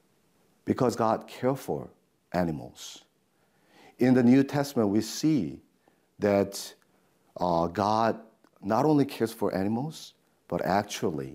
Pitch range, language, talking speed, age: 90-115 Hz, English, 110 wpm, 50-69